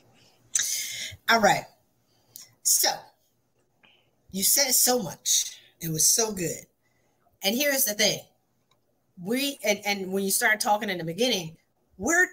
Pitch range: 190-275 Hz